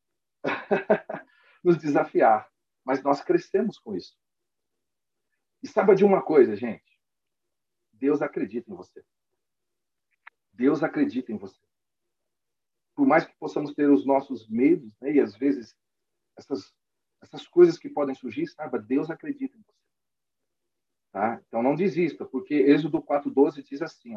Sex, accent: male, Brazilian